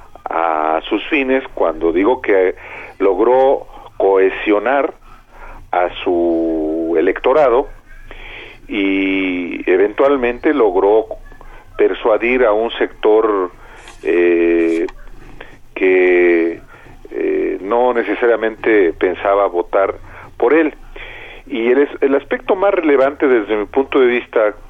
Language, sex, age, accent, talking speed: Spanish, male, 50-69, Mexican, 90 wpm